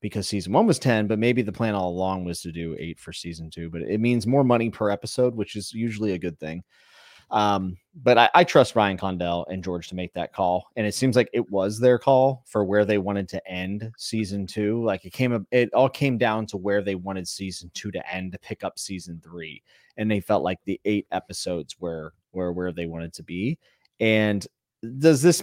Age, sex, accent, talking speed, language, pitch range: 30-49, male, American, 230 wpm, English, 95-115 Hz